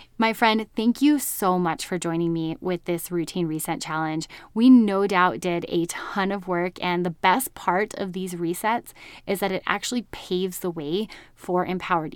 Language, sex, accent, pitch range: English, female, American, 175-215 Hz